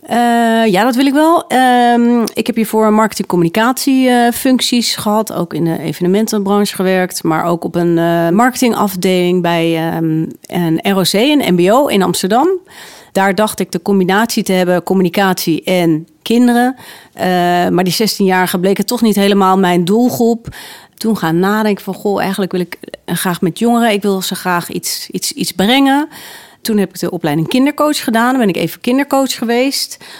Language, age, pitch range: Dutch, 40-59, 180-230 Hz